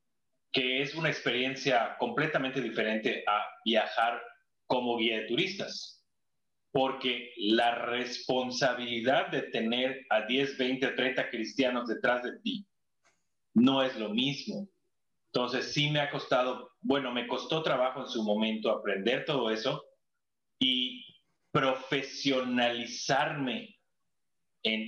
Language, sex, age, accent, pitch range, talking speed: Spanish, male, 30-49, Mexican, 125-185 Hz, 115 wpm